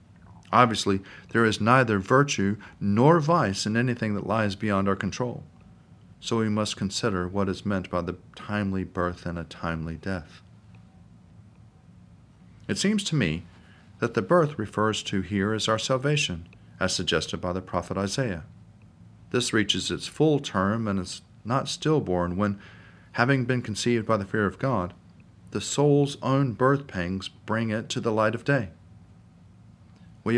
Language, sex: English, male